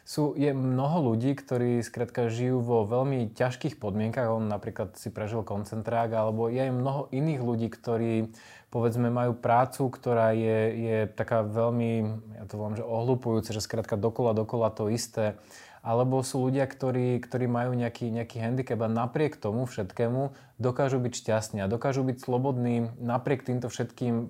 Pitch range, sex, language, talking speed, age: 110-125 Hz, male, Slovak, 155 wpm, 20-39